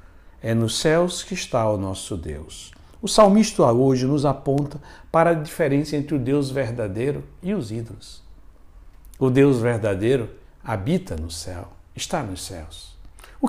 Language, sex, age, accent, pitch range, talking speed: Portuguese, male, 60-79, Brazilian, 90-150 Hz, 145 wpm